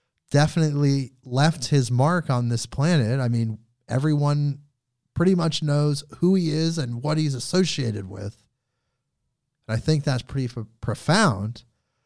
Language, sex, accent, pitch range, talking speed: English, male, American, 120-165 Hz, 140 wpm